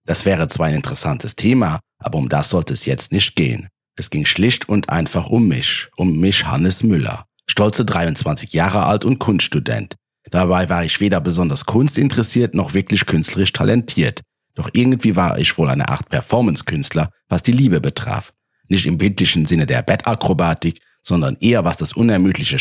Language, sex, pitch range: German, male, 90-120 Hz